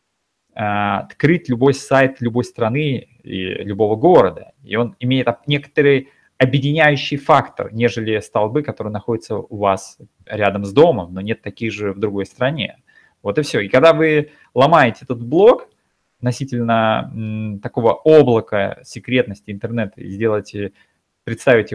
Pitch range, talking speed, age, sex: 105-135 Hz, 130 wpm, 20-39, male